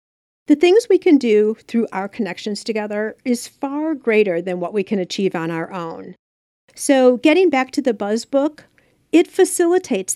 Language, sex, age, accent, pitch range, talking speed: English, female, 40-59, American, 200-295 Hz, 170 wpm